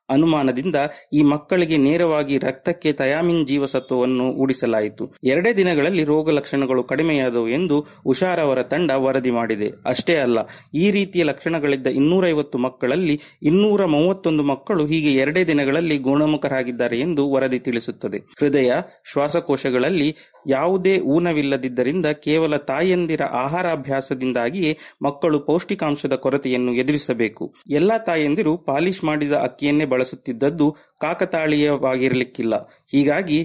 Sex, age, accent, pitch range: male, 30-49, native, 130-165 Hz